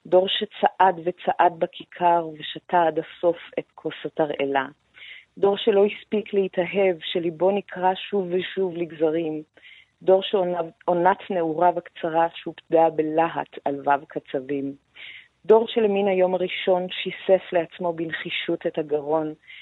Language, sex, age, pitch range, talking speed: Hebrew, female, 40-59, 160-190 Hz, 115 wpm